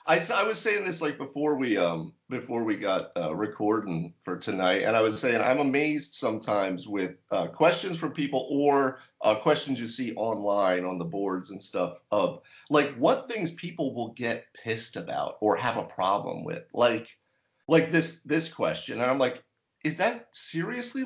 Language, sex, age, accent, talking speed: English, male, 40-59, American, 180 wpm